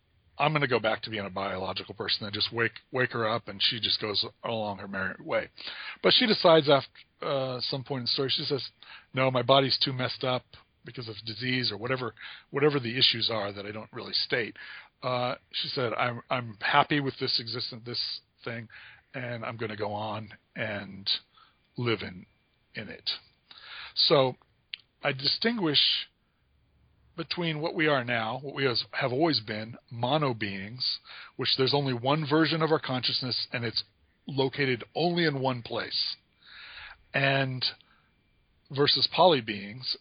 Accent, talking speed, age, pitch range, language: American, 170 wpm, 40-59, 110-140 Hz, English